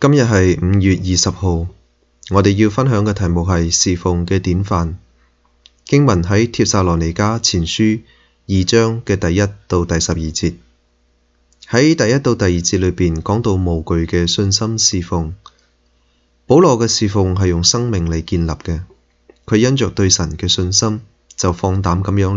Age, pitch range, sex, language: 20-39, 85-110 Hz, male, Chinese